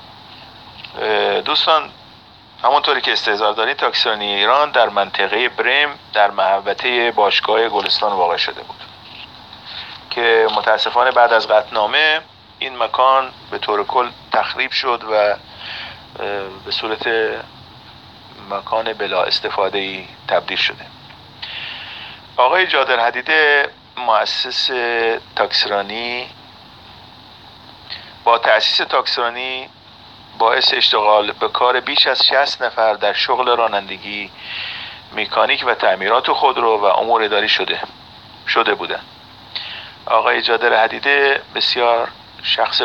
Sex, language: male, Persian